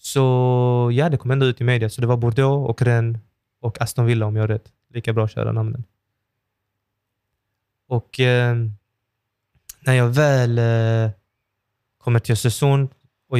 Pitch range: 105-120 Hz